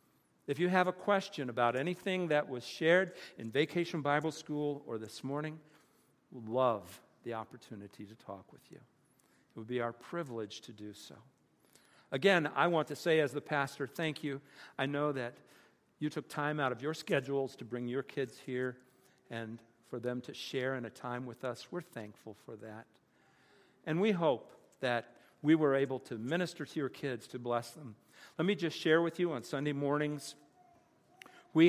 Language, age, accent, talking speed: English, 50-69, American, 185 wpm